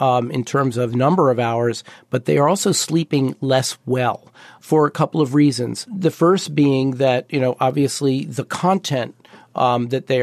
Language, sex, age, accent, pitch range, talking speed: English, male, 50-69, American, 130-155 Hz, 180 wpm